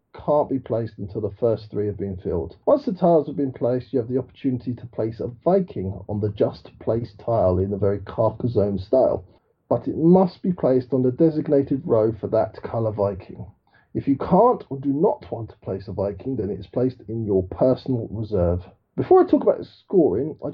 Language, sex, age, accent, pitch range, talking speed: English, male, 40-59, British, 110-170 Hz, 210 wpm